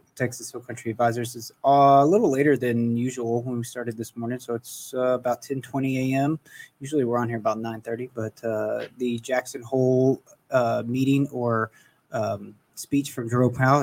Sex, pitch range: male, 115-135 Hz